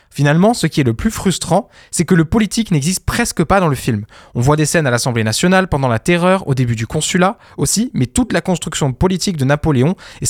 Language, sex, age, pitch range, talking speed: French, male, 20-39, 125-175 Hz, 235 wpm